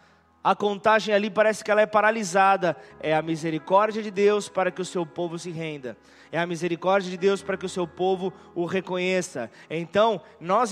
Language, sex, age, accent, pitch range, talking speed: Portuguese, male, 20-39, Brazilian, 190-230 Hz, 190 wpm